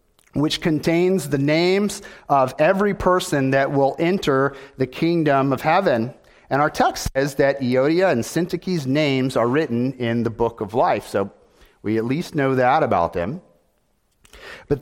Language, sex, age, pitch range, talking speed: English, male, 40-59, 125-160 Hz, 160 wpm